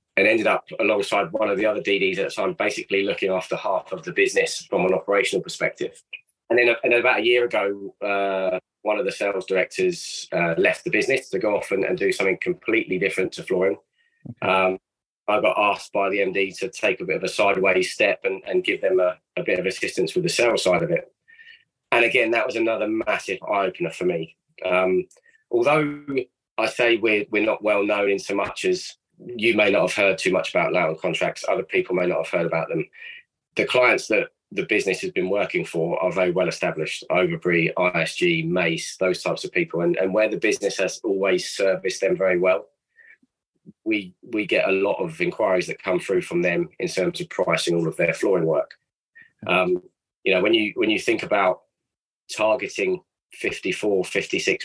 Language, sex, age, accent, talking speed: English, male, 20-39, British, 200 wpm